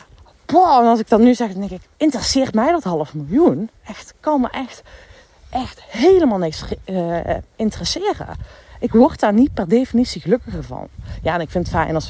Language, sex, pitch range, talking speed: Dutch, female, 135-210 Hz, 200 wpm